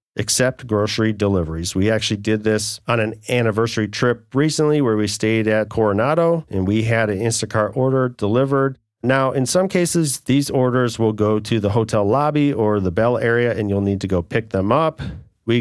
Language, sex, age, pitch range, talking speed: English, male, 40-59, 100-130 Hz, 190 wpm